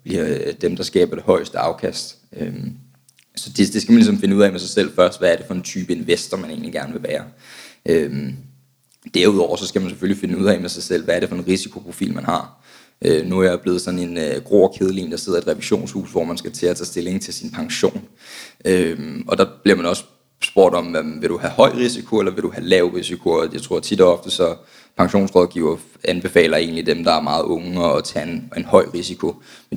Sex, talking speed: male, 220 wpm